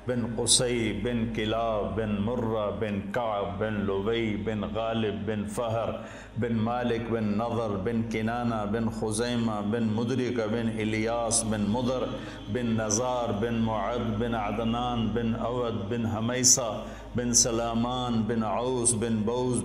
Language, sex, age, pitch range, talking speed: Urdu, male, 50-69, 110-125 Hz, 135 wpm